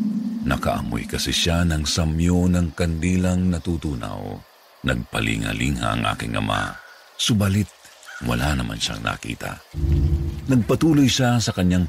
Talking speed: 105 wpm